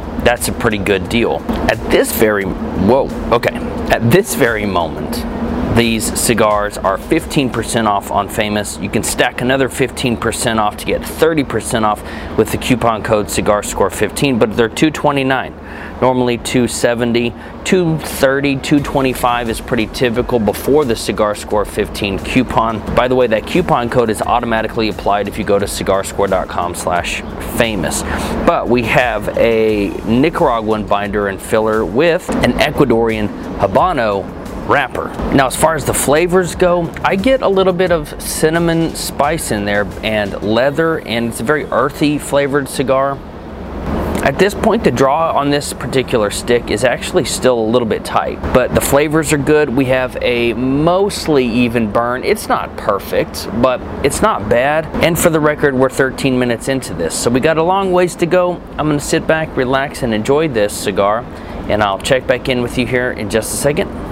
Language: English